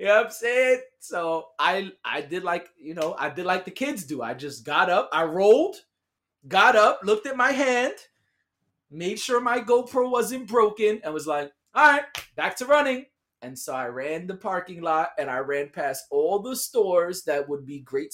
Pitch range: 130-190 Hz